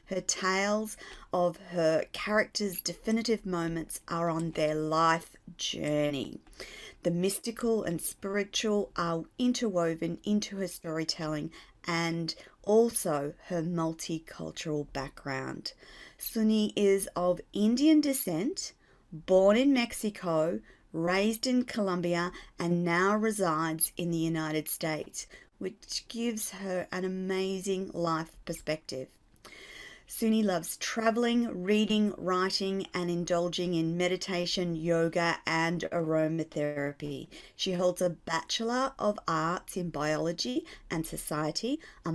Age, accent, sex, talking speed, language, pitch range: 40-59, Australian, female, 105 wpm, English, 165-210 Hz